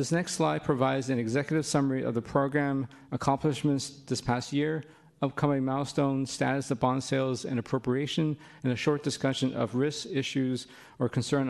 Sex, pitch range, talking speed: male, 125-145 Hz, 160 wpm